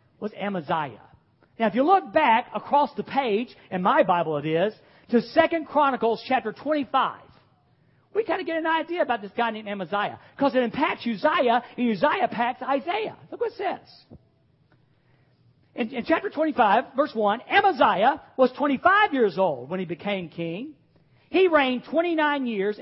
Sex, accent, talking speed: male, American, 165 wpm